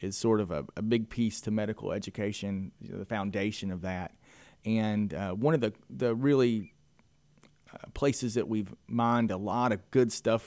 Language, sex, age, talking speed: English, male, 30-49, 190 wpm